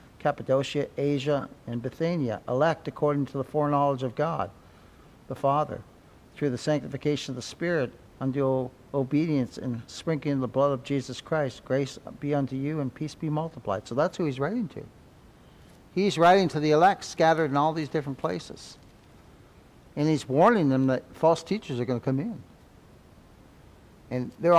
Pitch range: 125-155 Hz